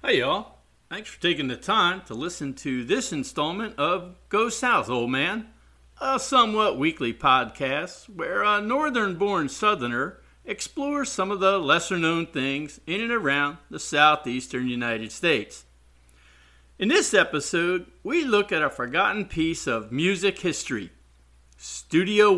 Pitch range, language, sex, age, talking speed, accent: 125-195 Hz, English, male, 50-69, 135 wpm, American